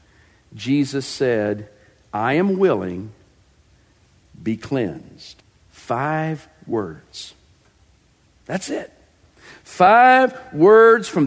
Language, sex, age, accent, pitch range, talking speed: English, male, 50-69, American, 185-285 Hz, 75 wpm